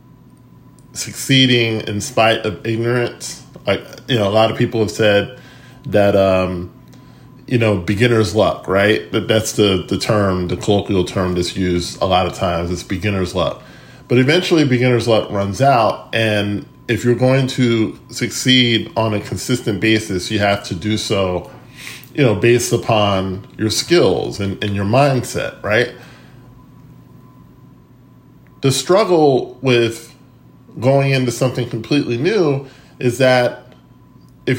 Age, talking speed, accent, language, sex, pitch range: 10-29, 140 wpm, American, English, male, 100-130 Hz